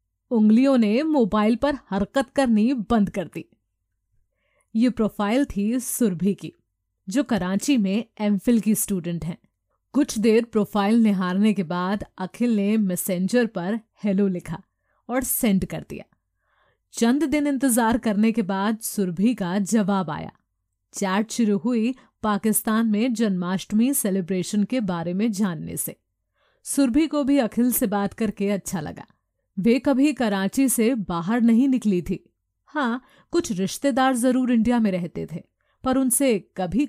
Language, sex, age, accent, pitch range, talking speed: Hindi, female, 30-49, native, 190-245 Hz, 140 wpm